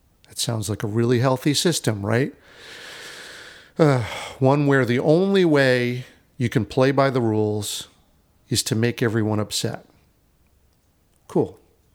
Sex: male